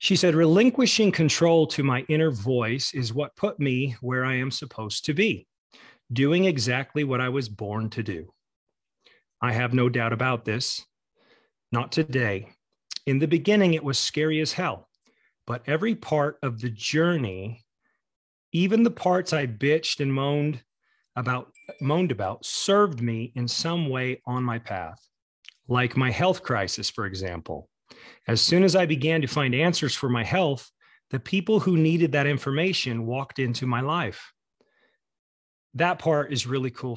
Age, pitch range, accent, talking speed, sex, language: 40-59, 115-155 Hz, American, 155 wpm, male, English